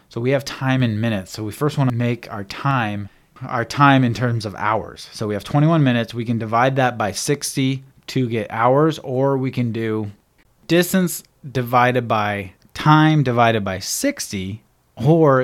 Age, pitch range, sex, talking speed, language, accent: 30-49, 110-135 Hz, male, 180 wpm, English, American